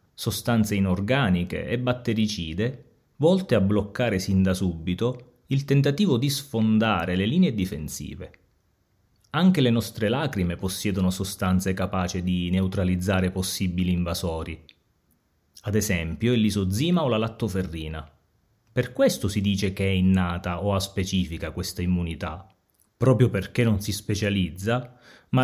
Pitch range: 90-120 Hz